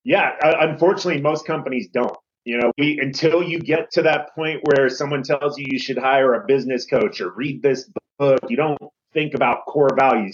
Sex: male